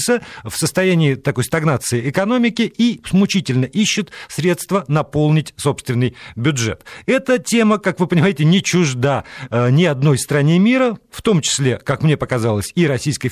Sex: male